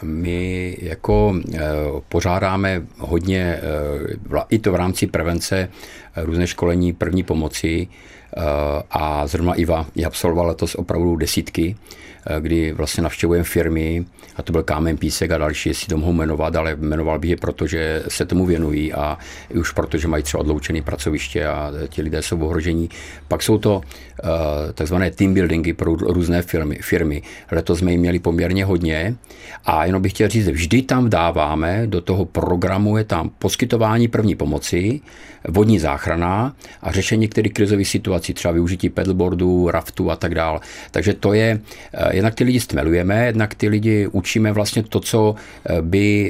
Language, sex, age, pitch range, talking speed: Czech, male, 50-69, 80-100 Hz, 155 wpm